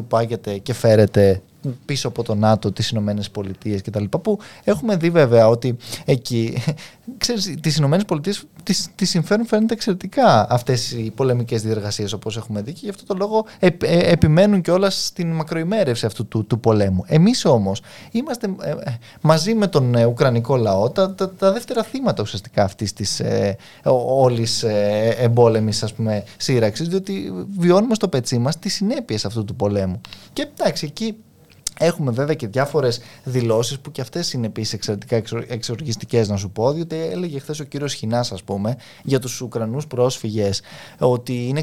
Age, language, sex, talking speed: 20-39, Greek, male, 160 wpm